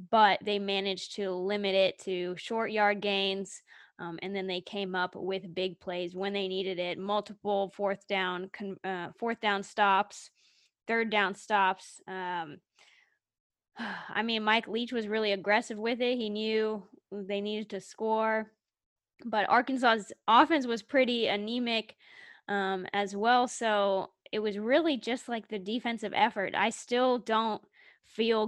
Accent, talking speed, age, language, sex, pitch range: American, 150 wpm, 20-39, English, female, 190-220 Hz